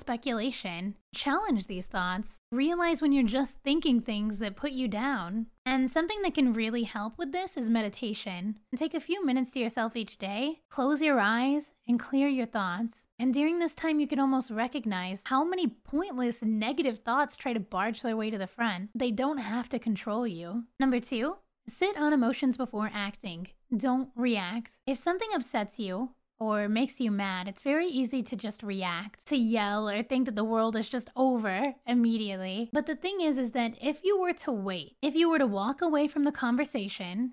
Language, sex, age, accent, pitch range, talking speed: English, female, 10-29, American, 220-280 Hz, 195 wpm